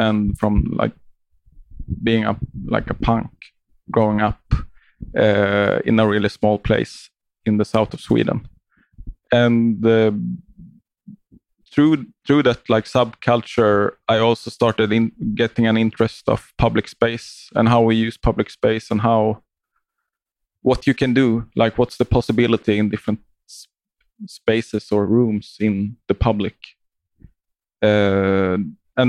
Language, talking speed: English, 135 wpm